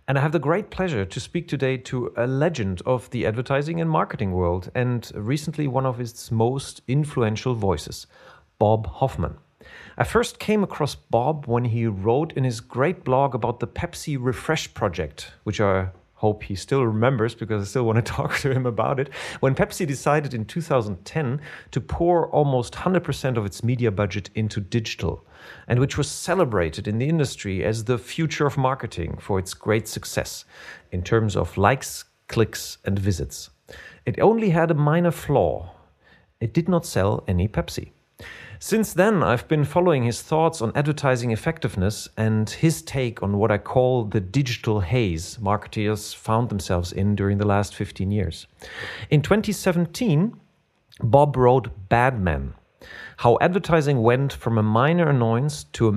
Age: 40-59